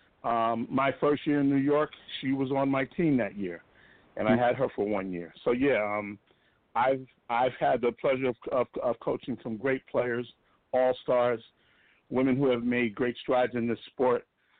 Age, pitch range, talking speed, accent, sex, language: 50-69, 120-145 Hz, 195 wpm, American, male, English